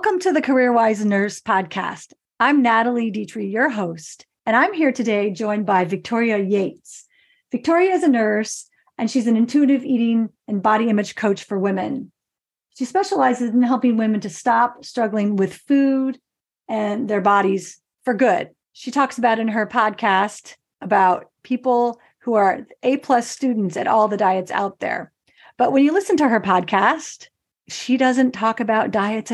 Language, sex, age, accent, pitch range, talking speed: English, female, 40-59, American, 205-255 Hz, 160 wpm